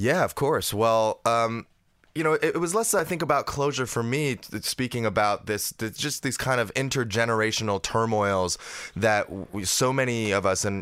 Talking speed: 175 wpm